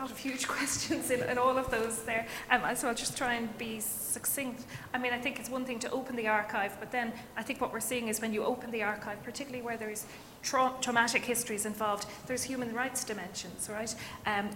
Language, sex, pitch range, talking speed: English, female, 215-250 Hz, 225 wpm